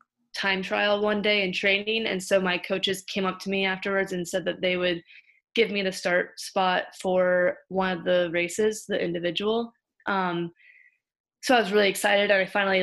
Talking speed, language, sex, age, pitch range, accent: 185 wpm, English, female, 20-39, 180-210 Hz, American